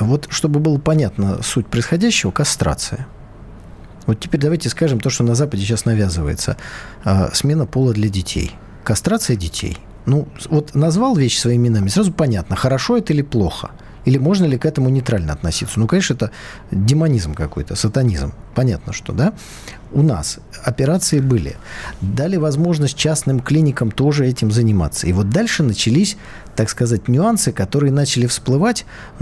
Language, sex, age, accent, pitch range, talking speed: Russian, male, 40-59, native, 100-150 Hz, 150 wpm